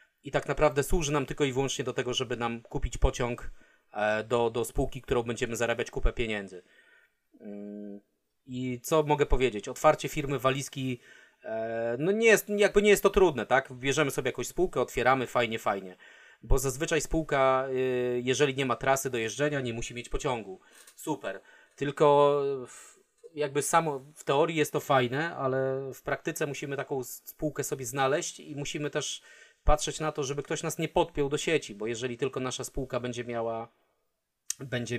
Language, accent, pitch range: Polish, native, 125-150 Hz